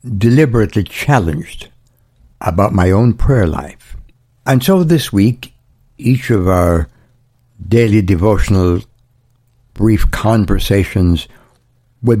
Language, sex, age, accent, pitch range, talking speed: English, male, 60-79, American, 100-125 Hz, 95 wpm